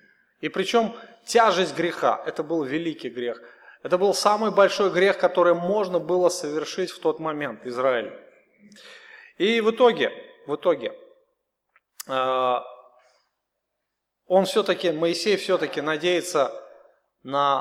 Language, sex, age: Russian, male, 30-49